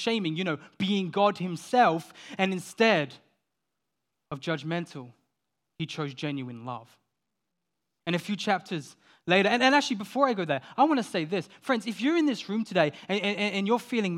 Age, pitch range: 20-39, 130-160 Hz